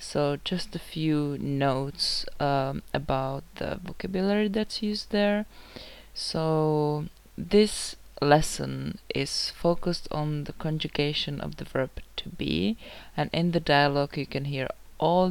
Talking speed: 130 wpm